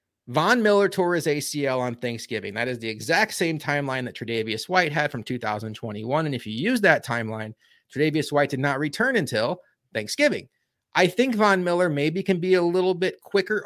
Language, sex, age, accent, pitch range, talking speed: English, male, 30-49, American, 120-175 Hz, 190 wpm